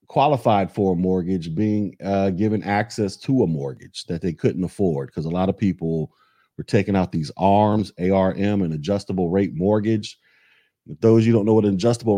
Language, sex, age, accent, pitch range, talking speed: English, male, 30-49, American, 90-110 Hz, 195 wpm